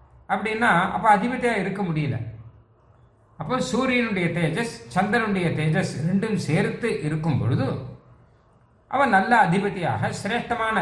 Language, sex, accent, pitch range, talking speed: Tamil, male, native, 140-215 Hz, 100 wpm